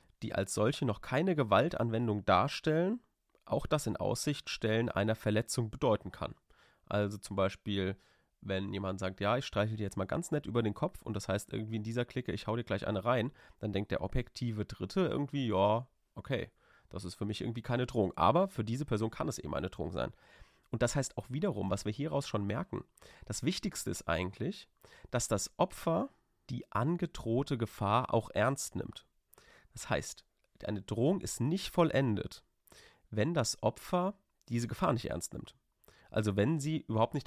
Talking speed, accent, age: 185 wpm, German, 30-49